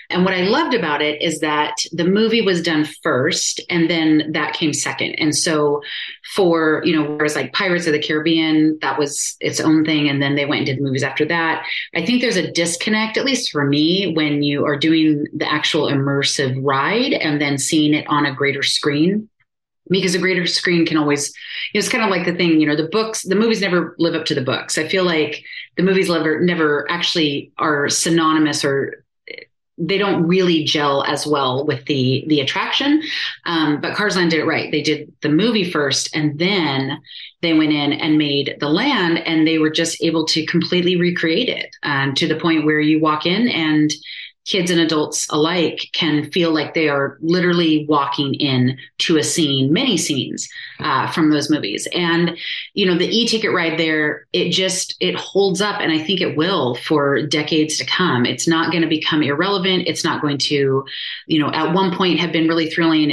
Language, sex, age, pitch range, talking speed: English, female, 30-49, 150-175 Hz, 200 wpm